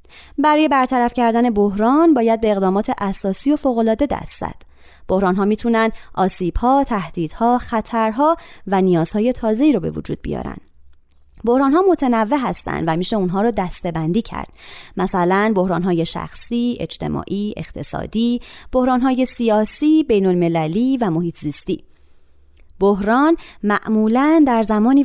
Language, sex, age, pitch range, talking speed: Persian, female, 30-49, 185-255 Hz, 135 wpm